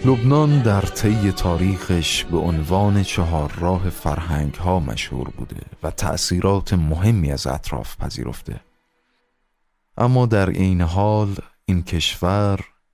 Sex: male